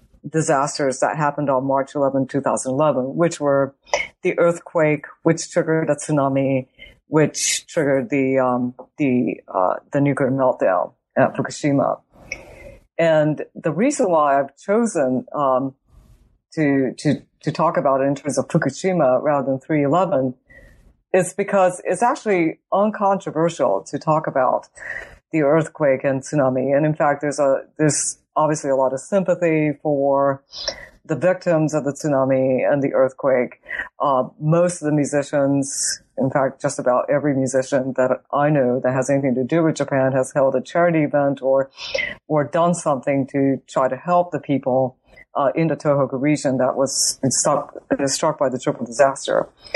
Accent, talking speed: American, 155 wpm